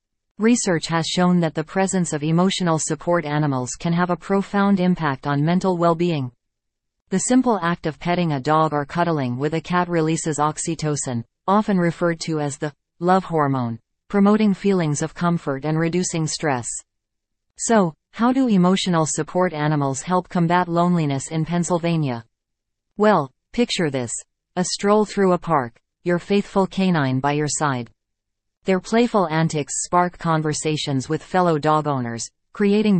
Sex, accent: female, American